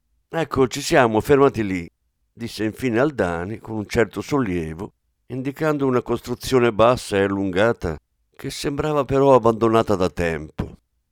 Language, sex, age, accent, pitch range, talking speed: Italian, male, 60-79, native, 85-130 Hz, 130 wpm